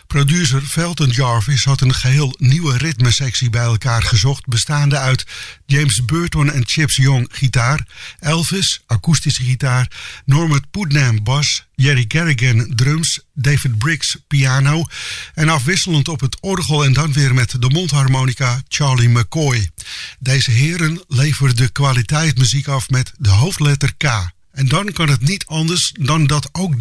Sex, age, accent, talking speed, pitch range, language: male, 50-69, Dutch, 140 wpm, 125-150 Hz, English